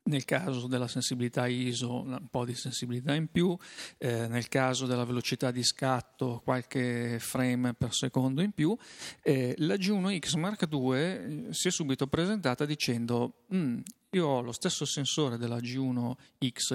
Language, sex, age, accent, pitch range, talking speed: Italian, male, 40-59, native, 120-140 Hz, 145 wpm